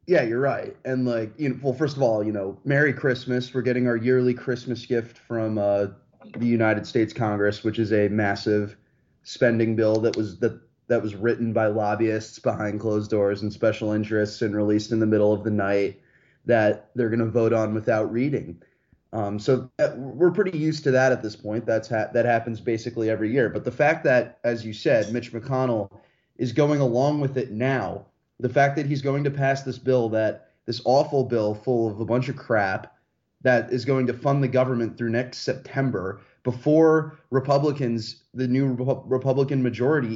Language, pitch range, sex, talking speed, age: English, 110-135 Hz, male, 195 wpm, 30-49